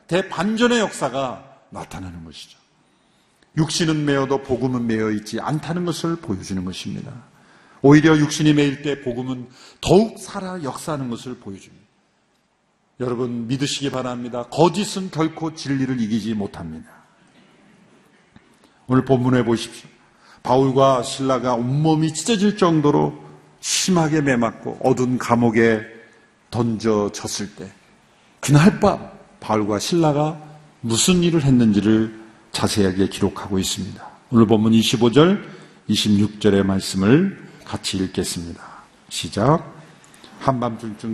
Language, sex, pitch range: Korean, male, 110-150 Hz